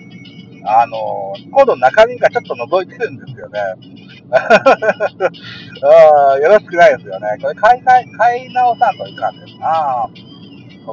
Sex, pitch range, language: male, 130-210 Hz, Japanese